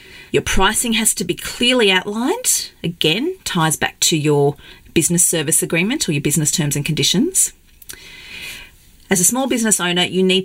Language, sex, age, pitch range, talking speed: English, female, 40-59, 155-205 Hz, 160 wpm